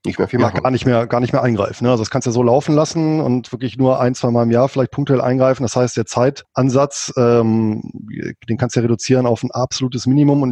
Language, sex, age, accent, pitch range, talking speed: German, male, 20-39, German, 115-140 Hz, 230 wpm